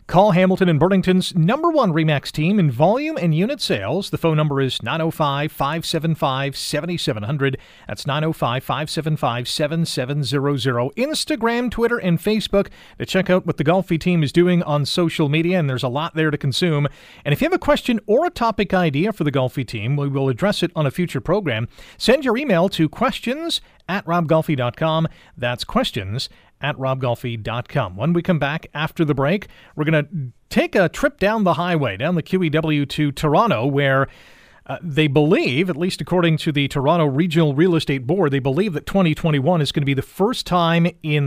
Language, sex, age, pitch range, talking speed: English, male, 40-59, 140-180 Hz, 180 wpm